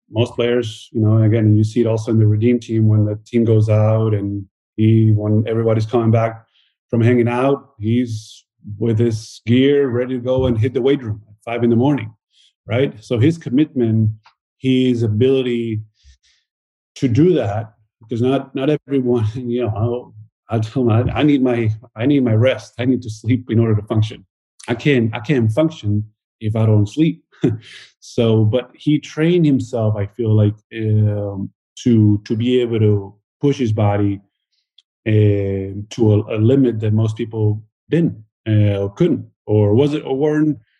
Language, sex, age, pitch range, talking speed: English, male, 30-49, 105-125 Hz, 180 wpm